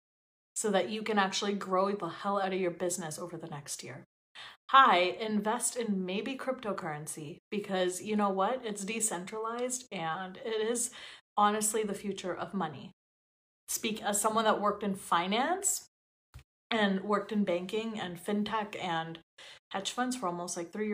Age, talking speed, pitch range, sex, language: 30-49, 160 wpm, 195-265 Hz, female, English